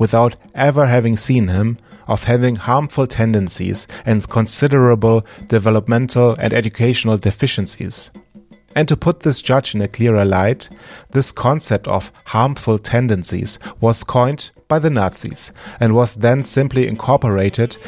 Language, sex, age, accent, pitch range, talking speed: English, male, 30-49, German, 105-125 Hz, 130 wpm